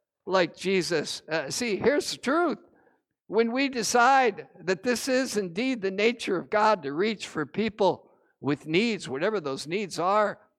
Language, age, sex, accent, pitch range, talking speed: English, 60-79, male, American, 190-255 Hz, 160 wpm